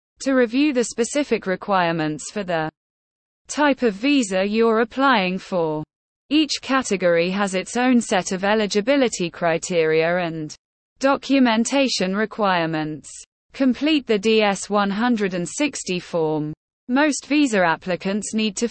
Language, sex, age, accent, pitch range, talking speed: English, female, 20-39, British, 180-245 Hz, 110 wpm